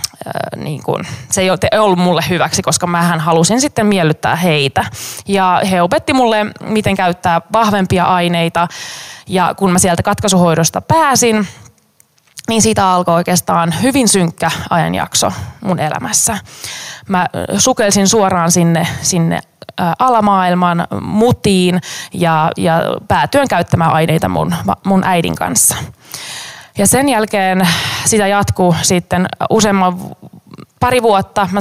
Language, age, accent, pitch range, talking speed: Finnish, 20-39, native, 175-210 Hz, 115 wpm